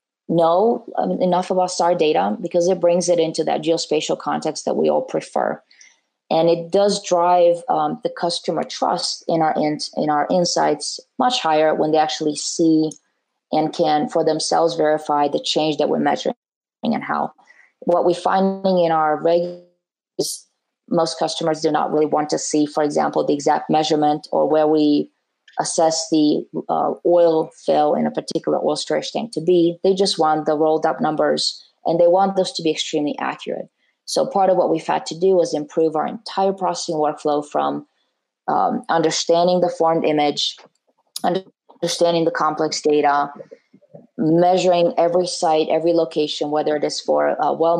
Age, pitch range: 20-39, 155-175 Hz